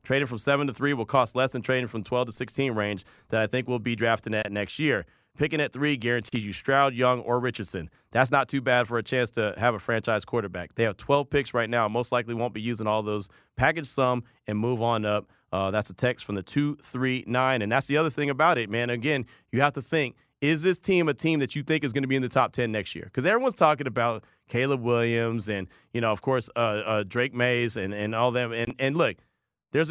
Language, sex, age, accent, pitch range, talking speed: English, male, 30-49, American, 110-135 Hz, 255 wpm